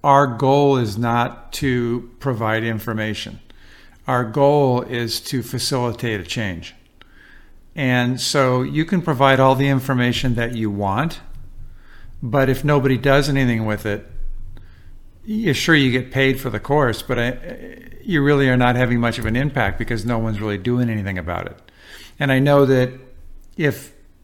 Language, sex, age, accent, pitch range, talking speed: English, male, 50-69, American, 115-140 Hz, 160 wpm